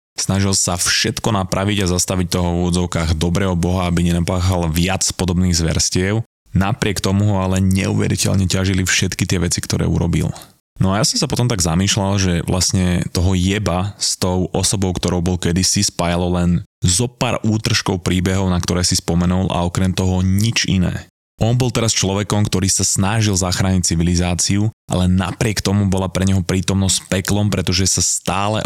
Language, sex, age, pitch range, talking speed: Slovak, male, 20-39, 90-105 Hz, 165 wpm